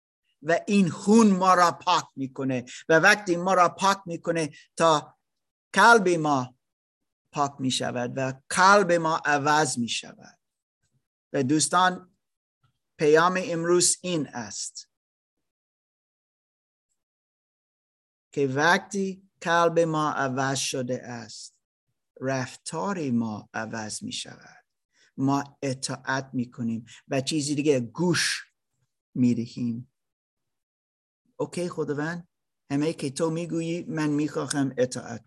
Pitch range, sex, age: 130-175 Hz, male, 50-69